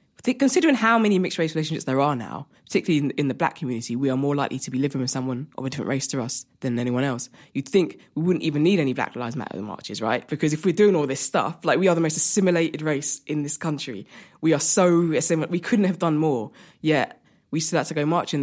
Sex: female